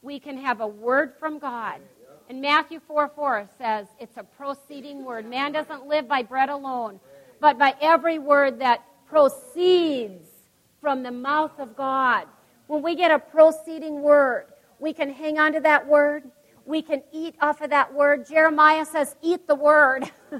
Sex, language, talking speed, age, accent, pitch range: female, English, 170 wpm, 50-69, American, 275-320 Hz